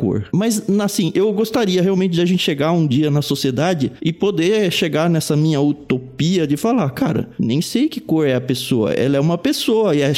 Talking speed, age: 210 wpm, 20-39